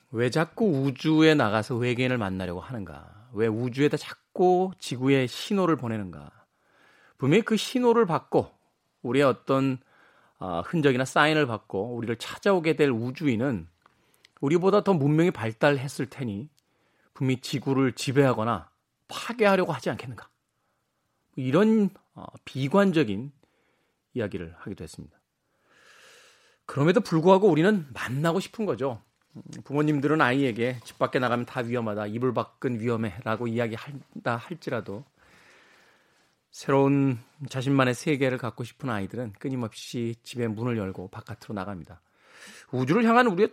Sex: male